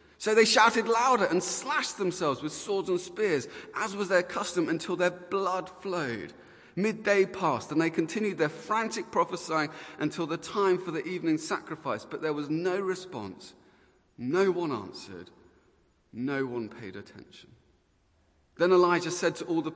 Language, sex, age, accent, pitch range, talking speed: English, male, 30-49, British, 150-190 Hz, 160 wpm